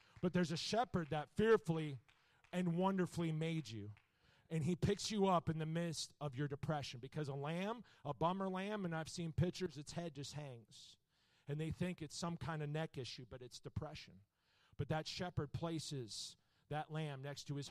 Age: 40-59